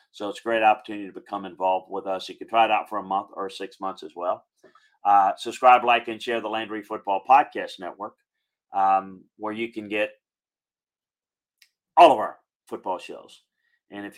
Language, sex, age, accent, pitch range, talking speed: English, male, 40-59, American, 100-125 Hz, 190 wpm